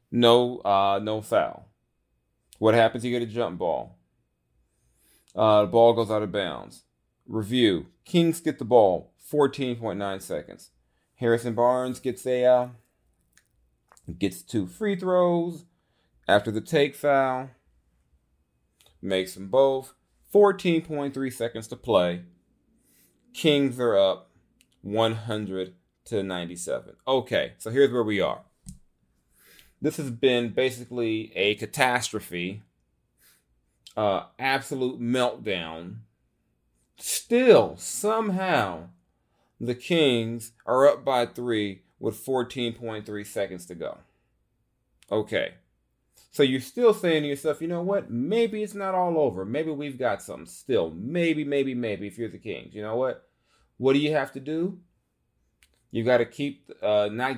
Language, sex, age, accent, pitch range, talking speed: English, male, 40-59, American, 95-140 Hz, 125 wpm